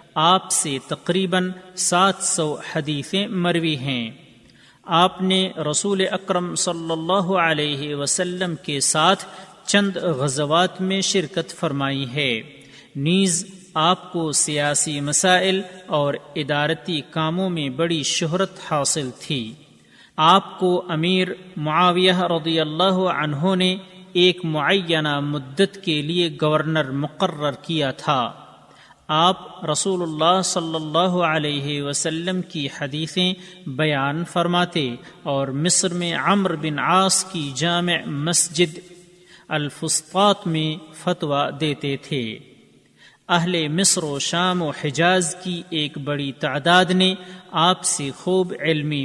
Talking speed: 115 wpm